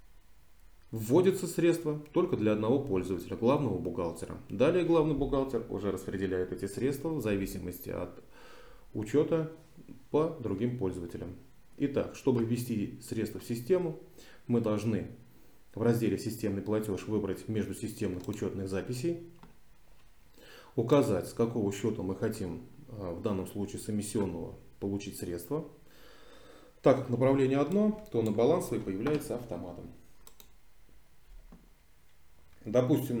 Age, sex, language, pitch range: 20-39, male, Russian, 95-135 Hz